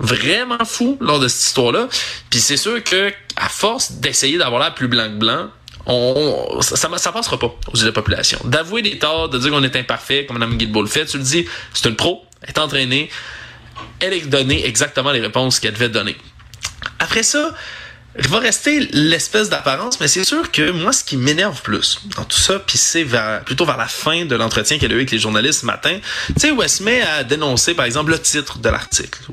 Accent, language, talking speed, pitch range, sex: Canadian, French, 225 wpm, 125-180 Hz, male